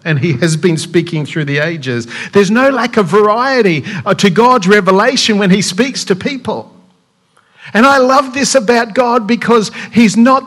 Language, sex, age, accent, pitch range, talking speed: English, male, 50-69, Australian, 170-230 Hz, 170 wpm